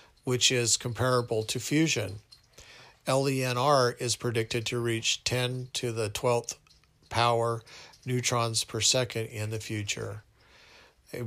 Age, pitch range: 50-69, 110-125 Hz